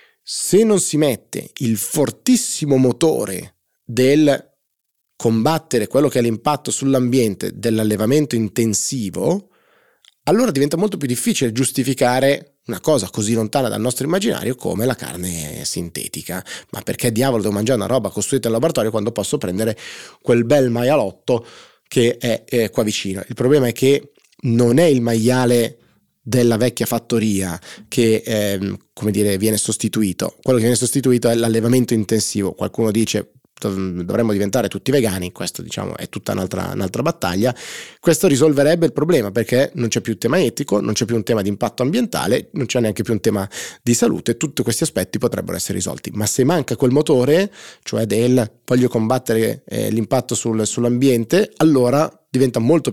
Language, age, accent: Italian, 30-49, native